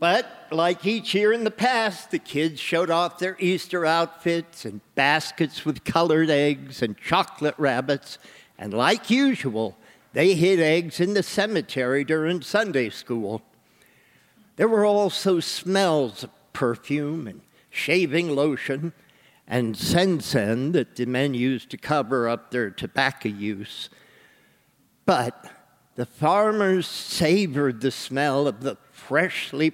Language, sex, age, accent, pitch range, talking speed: English, male, 50-69, American, 130-180 Hz, 130 wpm